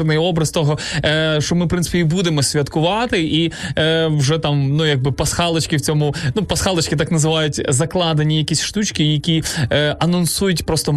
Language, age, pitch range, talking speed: Ukrainian, 20-39, 140-165 Hz, 140 wpm